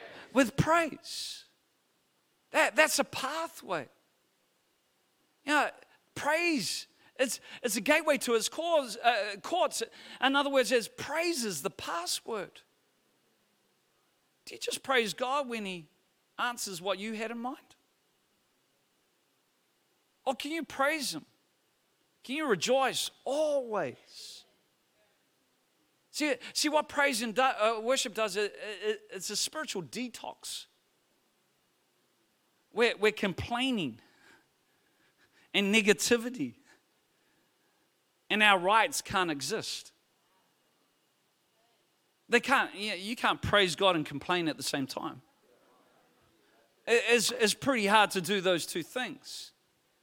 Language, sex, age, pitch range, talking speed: English, male, 40-59, 210-290 Hz, 115 wpm